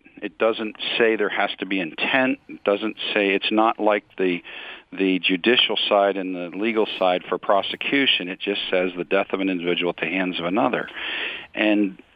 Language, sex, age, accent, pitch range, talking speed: English, male, 50-69, American, 90-105 Hz, 190 wpm